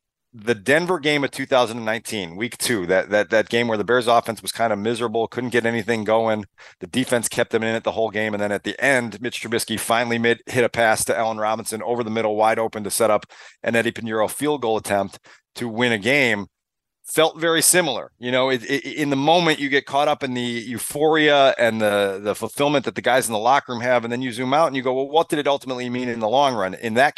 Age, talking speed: 40-59, 245 wpm